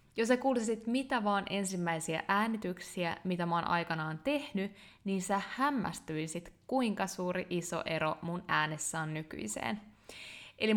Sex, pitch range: female, 175-220 Hz